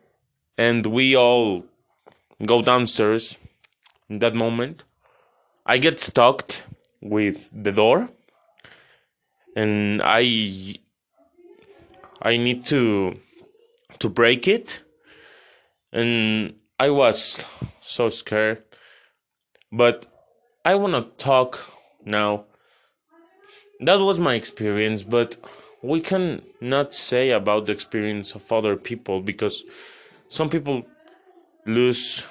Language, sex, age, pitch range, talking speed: English, male, 20-39, 110-180 Hz, 95 wpm